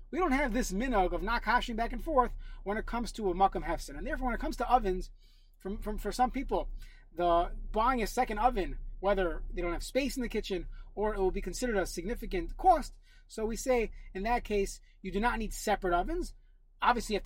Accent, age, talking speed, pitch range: American, 30-49, 230 wpm, 185-250 Hz